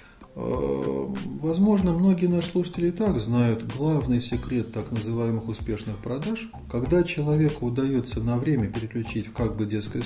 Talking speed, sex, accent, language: 135 wpm, male, native, Russian